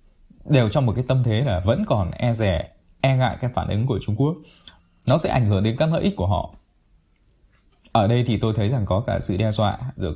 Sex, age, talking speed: male, 20-39, 240 wpm